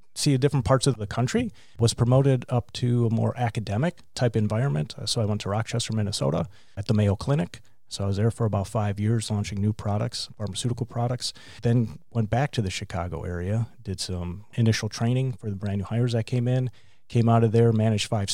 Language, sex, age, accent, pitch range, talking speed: English, male, 30-49, American, 105-125 Hz, 205 wpm